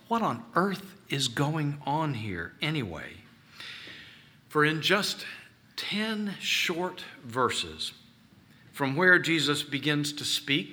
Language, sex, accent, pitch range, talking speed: English, male, American, 120-155 Hz, 110 wpm